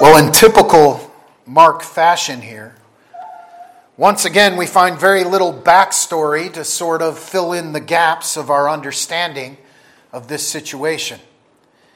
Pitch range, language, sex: 155-210 Hz, English, male